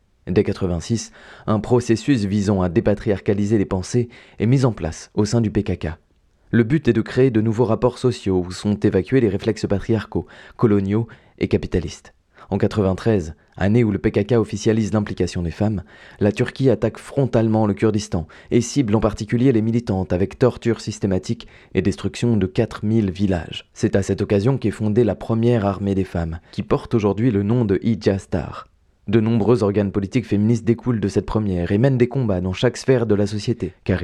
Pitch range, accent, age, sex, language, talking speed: 95-115 Hz, French, 20-39, male, French, 180 wpm